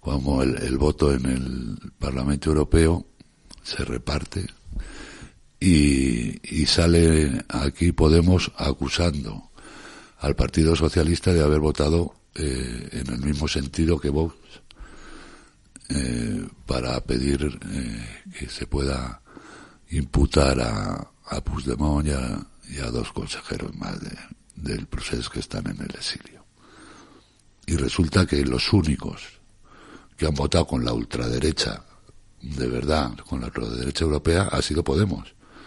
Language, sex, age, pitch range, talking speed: Spanish, male, 60-79, 65-80 Hz, 125 wpm